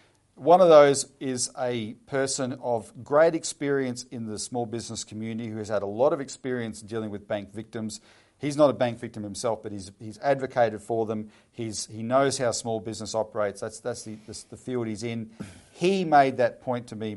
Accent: Australian